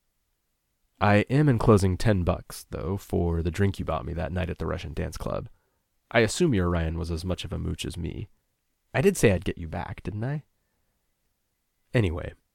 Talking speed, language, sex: 195 wpm, English, male